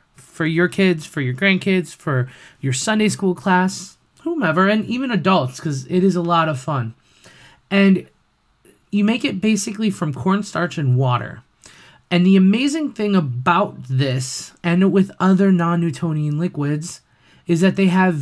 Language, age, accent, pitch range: English, 20-39, American, 135-195 Hz